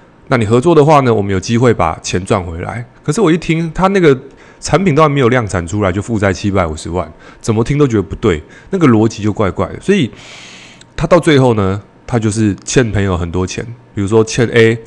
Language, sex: Chinese, male